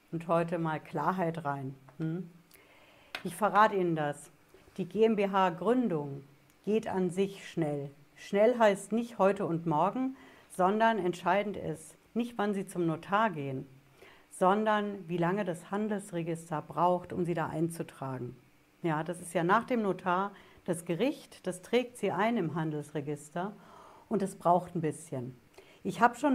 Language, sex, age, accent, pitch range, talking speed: German, female, 60-79, German, 155-205 Hz, 145 wpm